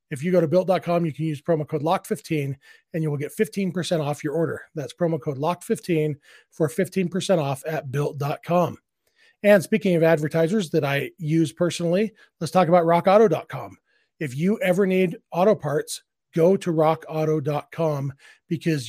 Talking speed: 160 wpm